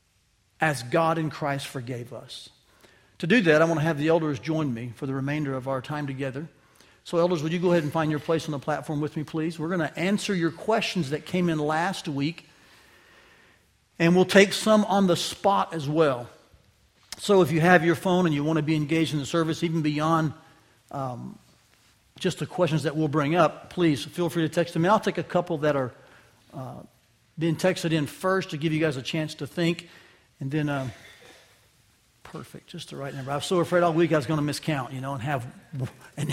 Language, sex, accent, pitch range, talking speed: English, male, American, 150-180 Hz, 220 wpm